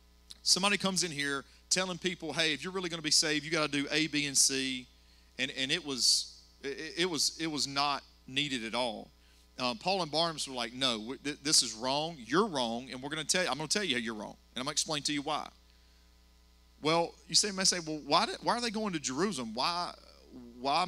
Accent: American